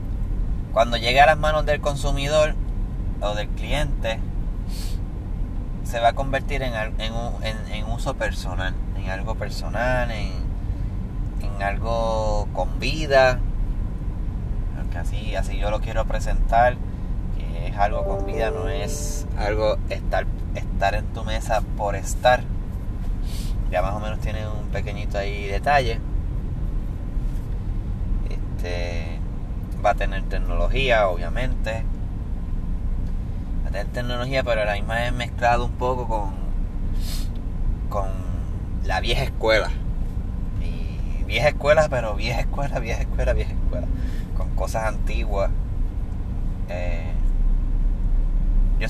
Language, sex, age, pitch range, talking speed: Spanish, male, 20-39, 90-110 Hz, 115 wpm